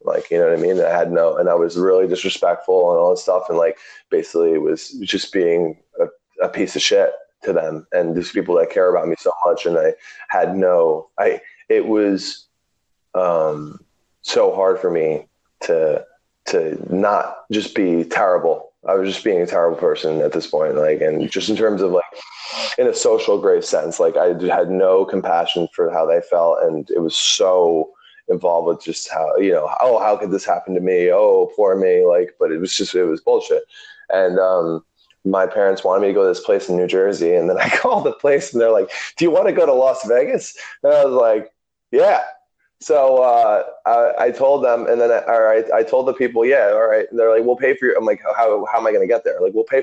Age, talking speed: 20-39, 230 wpm